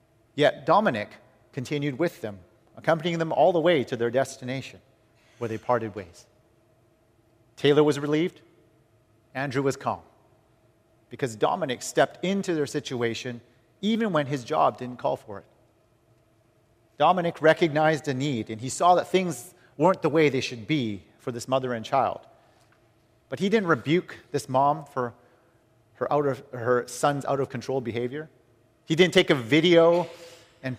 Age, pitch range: 40-59, 120-160 Hz